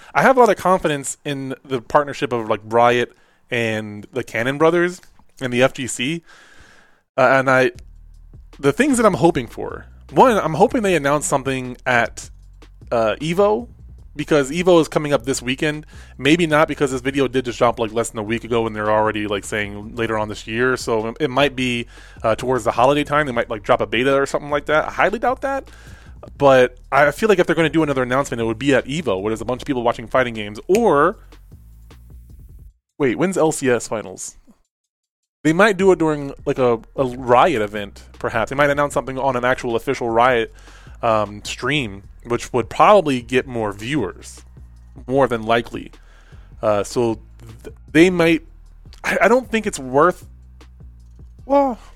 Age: 20-39